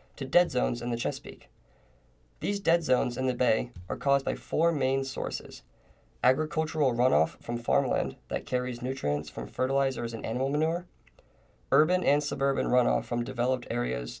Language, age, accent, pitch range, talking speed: English, 20-39, American, 120-140 Hz, 155 wpm